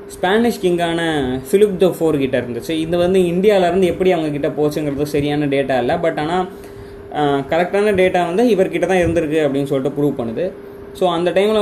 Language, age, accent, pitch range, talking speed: Tamil, 20-39, native, 140-180 Hz, 155 wpm